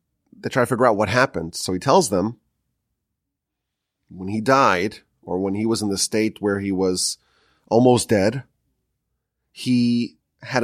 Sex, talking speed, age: male, 160 wpm, 30-49